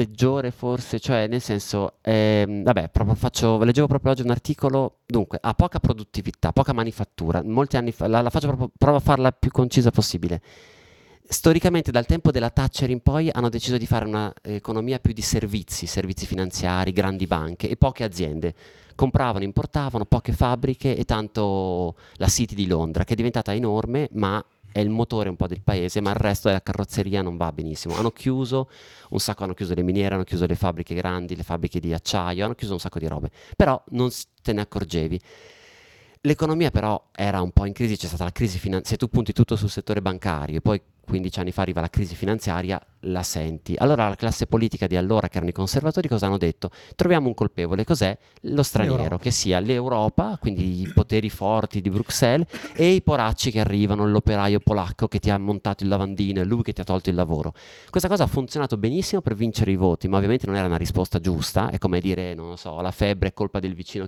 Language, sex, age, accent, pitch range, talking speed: Italian, male, 30-49, native, 95-120 Hz, 205 wpm